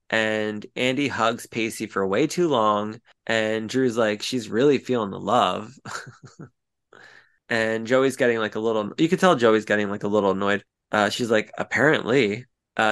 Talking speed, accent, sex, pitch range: 165 wpm, American, male, 115-150 Hz